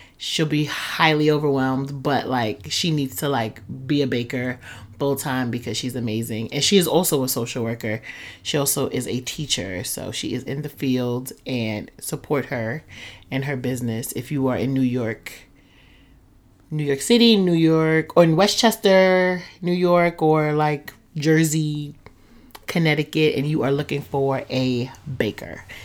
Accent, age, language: American, 30-49, English